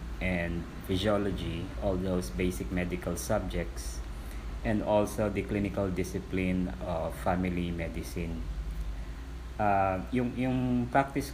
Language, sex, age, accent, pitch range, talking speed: Filipino, male, 20-39, native, 85-100 Hz, 100 wpm